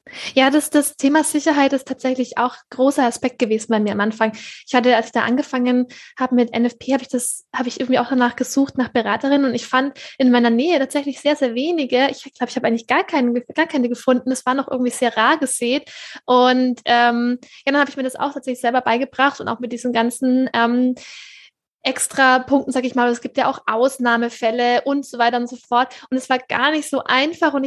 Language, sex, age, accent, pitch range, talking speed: German, female, 20-39, German, 240-270 Hz, 230 wpm